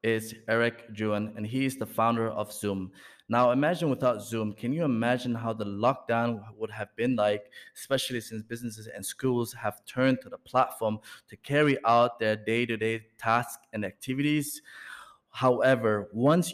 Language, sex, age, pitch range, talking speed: English, male, 20-39, 105-130 Hz, 160 wpm